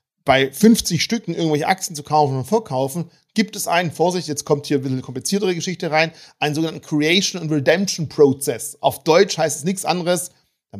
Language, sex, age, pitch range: German, male, 40-59, 145-210 Hz